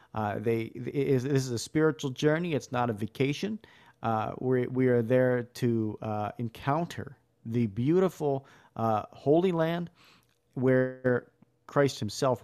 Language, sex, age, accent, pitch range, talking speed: English, male, 40-59, American, 115-140 Hz, 120 wpm